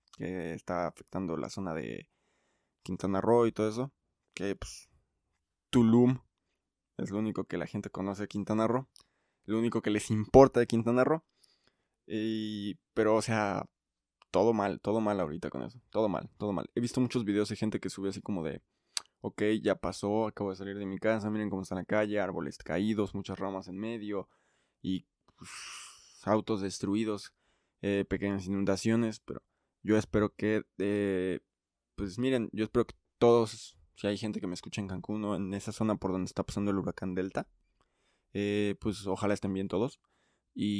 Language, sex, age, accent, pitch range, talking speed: Spanish, male, 20-39, Mexican, 95-110 Hz, 180 wpm